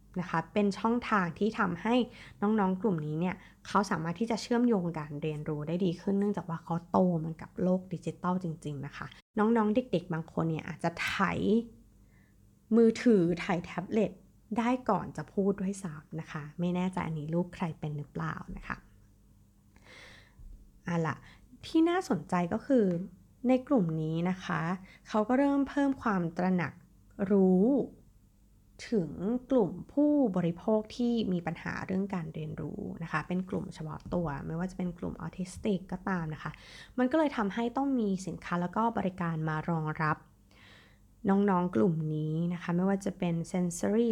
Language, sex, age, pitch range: Thai, female, 20-39, 160-210 Hz